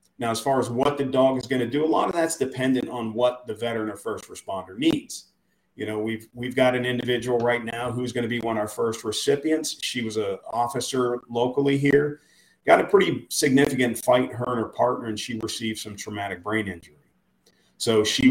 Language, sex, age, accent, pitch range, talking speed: English, male, 40-59, American, 115-135 Hz, 210 wpm